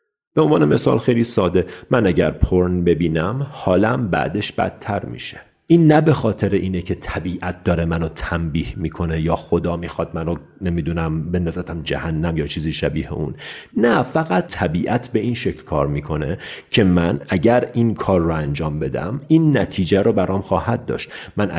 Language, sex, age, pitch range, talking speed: Persian, male, 40-59, 85-115 Hz, 160 wpm